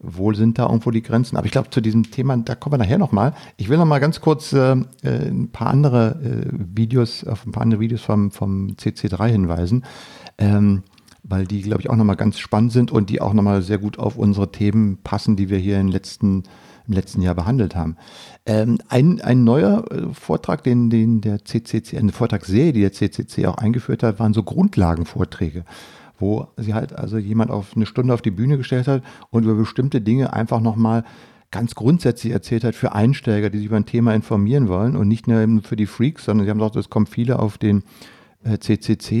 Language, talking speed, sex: German, 210 wpm, male